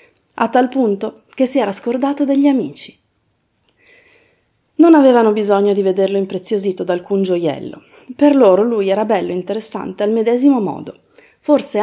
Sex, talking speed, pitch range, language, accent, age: female, 145 wpm, 185-285 Hz, Italian, native, 30-49